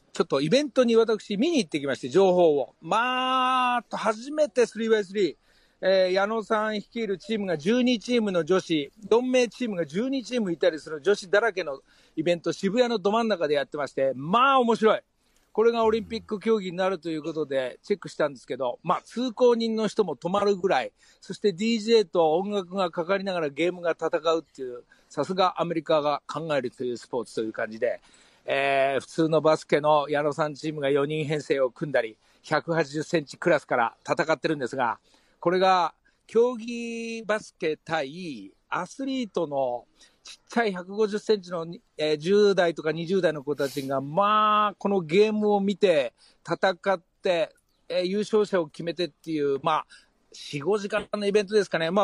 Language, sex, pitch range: Japanese, male, 160-215 Hz